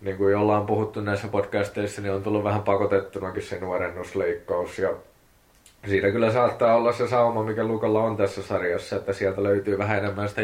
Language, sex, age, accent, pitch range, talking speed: Finnish, male, 20-39, native, 95-105 Hz, 180 wpm